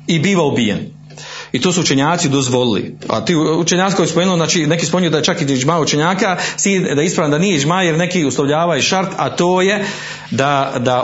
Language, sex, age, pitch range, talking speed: Croatian, male, 40-59, 130-175 Hz, 200 wpm